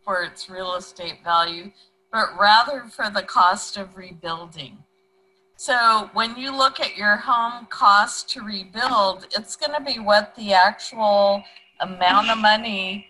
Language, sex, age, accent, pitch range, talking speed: English, female, 50-69, American, 185-240 Hz, 145 wpm